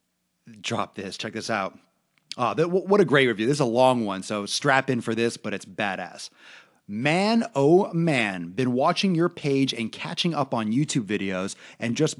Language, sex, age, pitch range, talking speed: English, male, 30-49, 115-160 Hz, 200 wpm